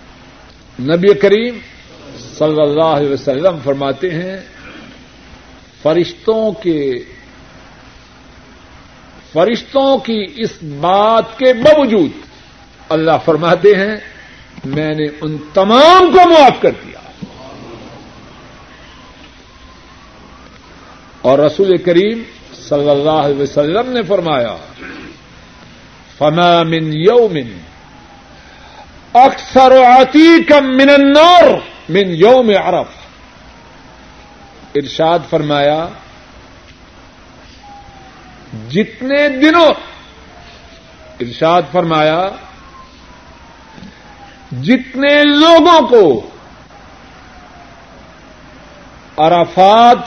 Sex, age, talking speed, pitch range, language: male, 60-79, 65 wpm, 155-260 Hz, Urdu